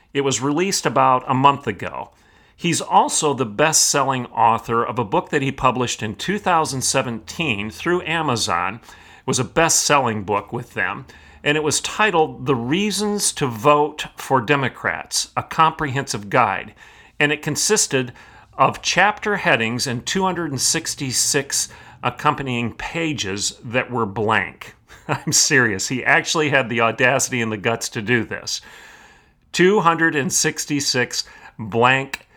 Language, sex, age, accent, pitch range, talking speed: English, male, 40-59, American, 115-150 Hz, 130 wpm